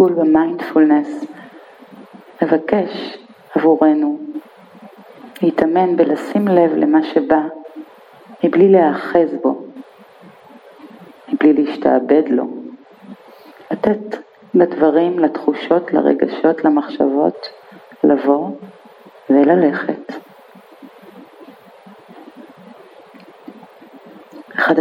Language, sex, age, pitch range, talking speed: Hebrew, female, 40-59, 145-195 Hz, 55 wpm